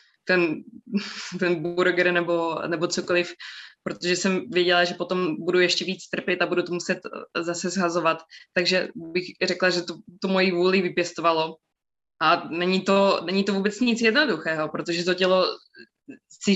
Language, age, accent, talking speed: Czech, 20-39, native, 150 wpm